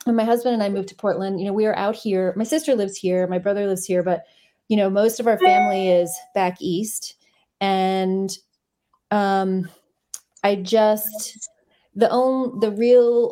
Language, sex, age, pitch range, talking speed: English, female, 30-49, 180-210 Hz, 175 wpm